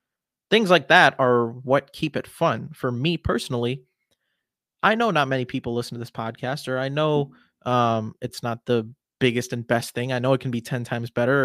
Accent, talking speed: American, 205 wpm